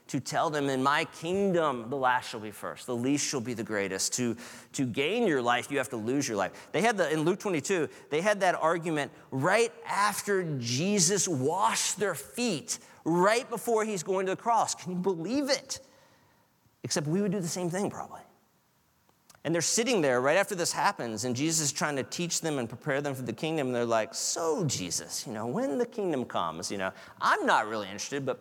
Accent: American